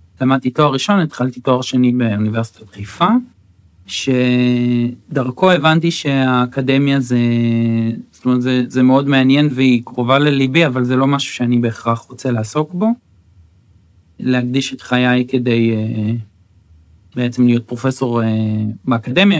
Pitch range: 120-145 Hz